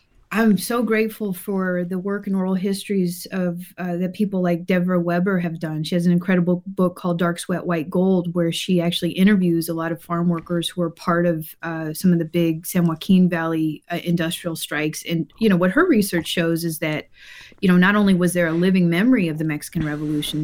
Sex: female